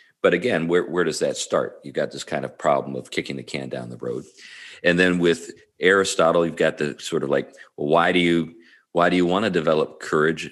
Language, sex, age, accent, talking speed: English, male, 50-69, American, 235 wpm